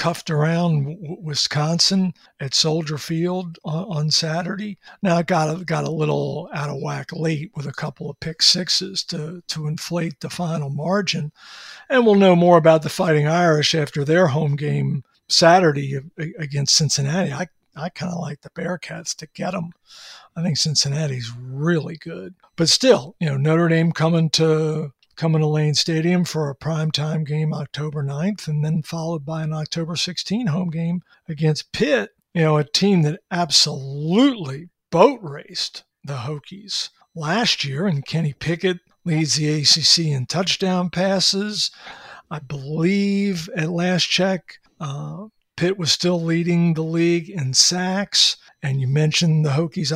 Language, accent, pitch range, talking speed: English, American, 150-175 Hz, 155 wpm